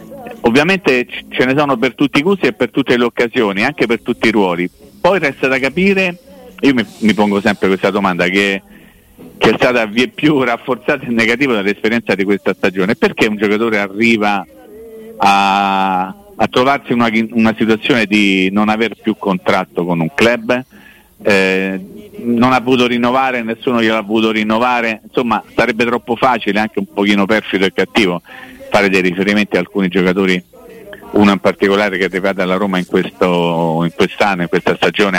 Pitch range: 95-120 Hz